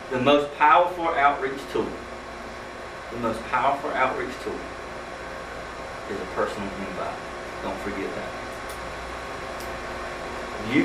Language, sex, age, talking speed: English, male, 40-59, 100 wpm